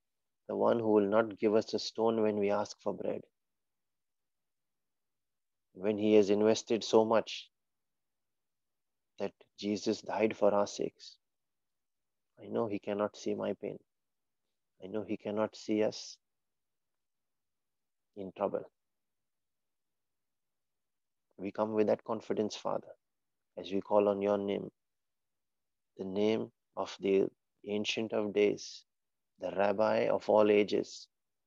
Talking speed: 125 wpm